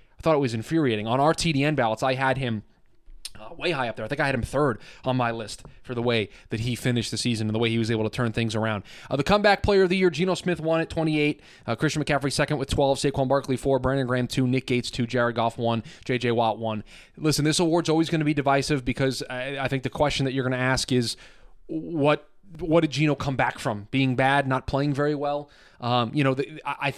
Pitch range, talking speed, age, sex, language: 125-150 Hz, 255 wpm, 20-39, male, English